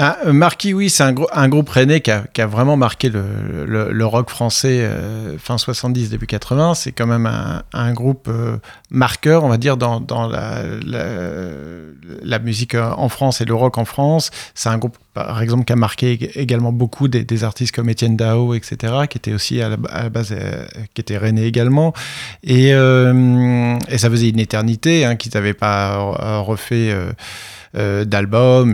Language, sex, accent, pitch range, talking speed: French, male, French, 105-130 Hz, 190 wpm